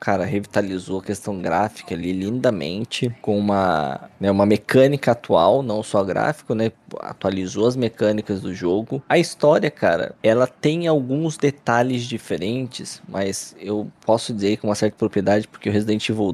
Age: 20-39